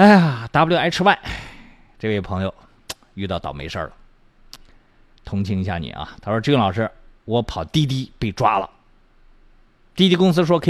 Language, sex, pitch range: Chinese, male, 110-160 Hz